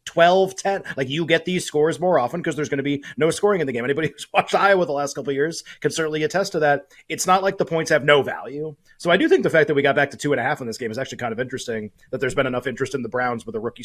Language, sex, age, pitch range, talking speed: English, male, 30-49, 125-155 Hz, 325 wpm